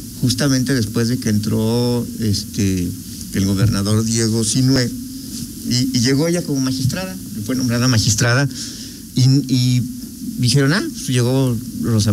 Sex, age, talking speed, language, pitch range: male, 50-69, 125 wpm, Spanish, 100-130 Hz